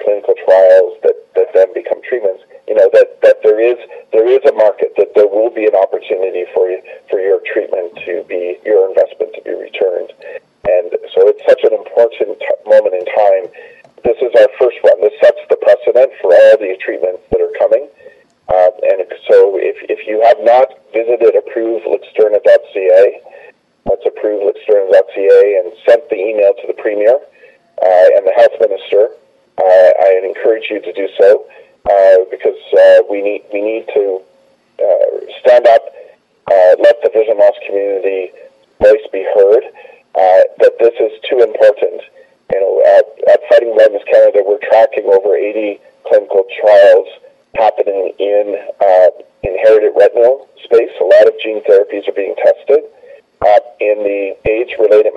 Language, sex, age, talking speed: English, male, 40-59, 160 wpm